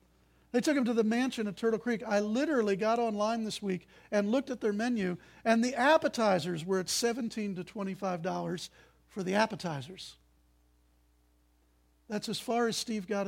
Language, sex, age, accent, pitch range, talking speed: English, male, 50-69, American, 175-250 Hz, 165 wpm